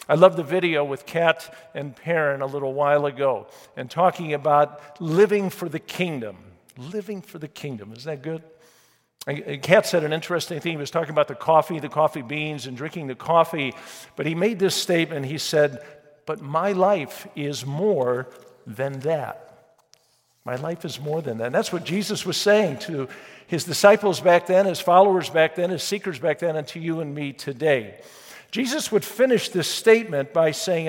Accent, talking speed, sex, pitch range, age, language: American, 190 wpm, male, 145-175 Hz, 50-69, English